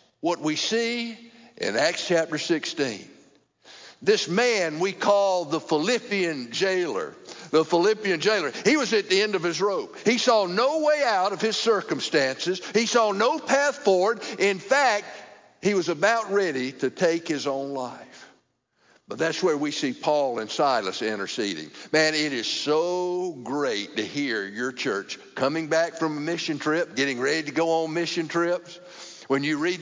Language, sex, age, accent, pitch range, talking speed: English, male, 50-69, American, 165-230 Hz, 165 wpm